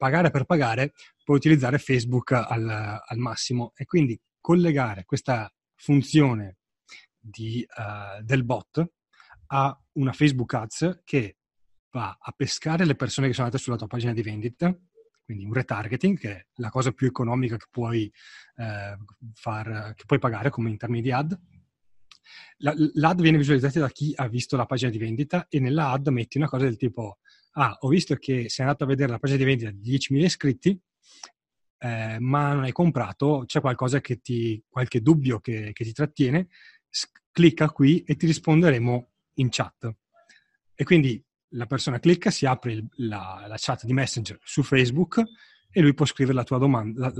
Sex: male